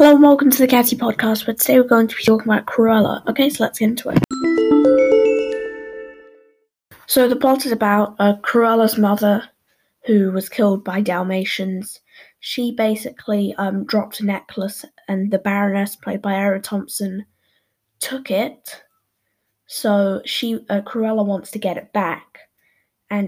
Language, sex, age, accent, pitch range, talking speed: English, female, 10-29, British, 195-240 Hz, 155 wpm